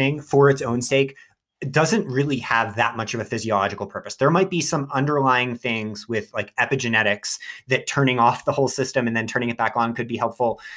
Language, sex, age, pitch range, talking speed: English, male, 30-49, 115-140 Hz, 210 wpm